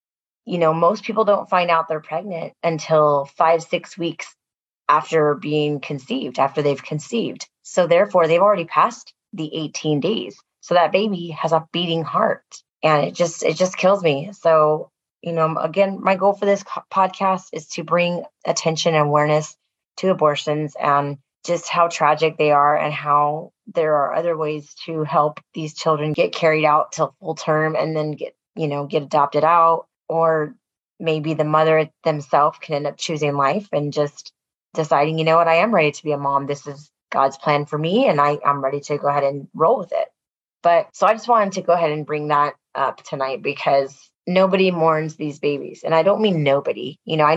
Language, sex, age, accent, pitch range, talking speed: English, female, 20-39, American, 145-170 Hz, 195 wpm